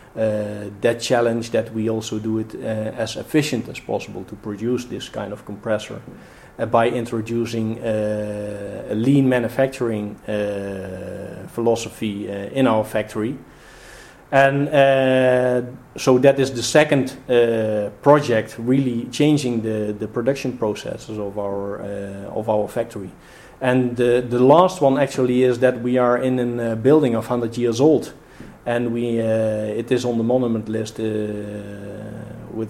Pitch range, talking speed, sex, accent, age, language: 110-125 Hz, 145 wpm, male, Dutch, 40-59, English